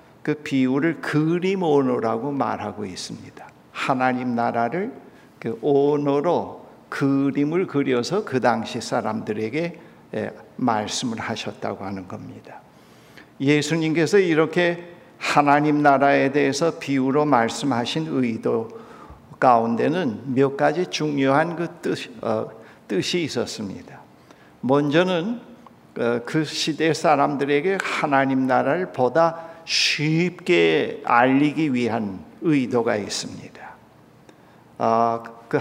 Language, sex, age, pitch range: Korean, male, 60-79, 130-165 Hz